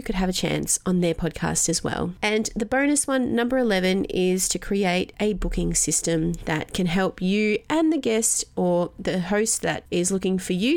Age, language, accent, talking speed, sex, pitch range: 30-49, English, Australian, 200 wpm, female, 170-220 Hz